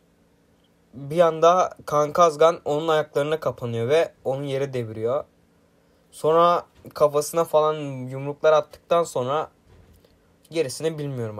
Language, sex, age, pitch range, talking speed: Turkish, male, 20-39, 125-160 Hz, 100 wpm